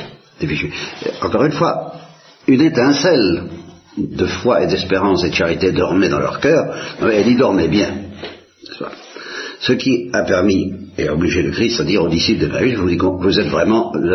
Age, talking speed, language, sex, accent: 60-79, 190 wpm, Italian, male, French